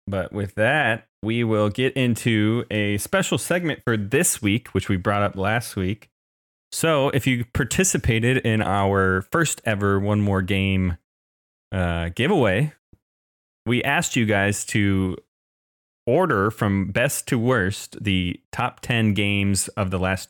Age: 30-49